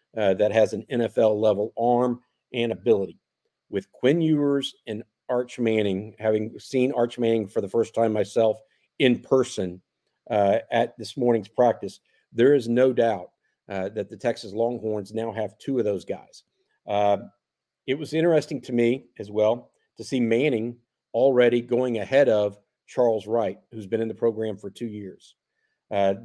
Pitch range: 105-125 Hz